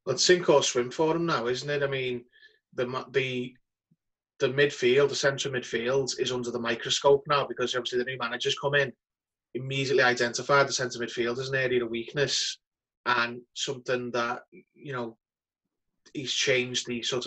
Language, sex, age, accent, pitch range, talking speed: English, male, 20-39, British, 120-135 Hz, 170 wpm